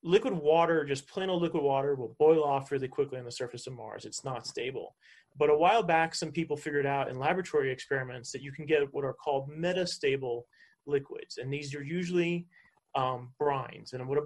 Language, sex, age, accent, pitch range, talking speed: English, male, 30-49, American, 135-165 Hz, 205 wpm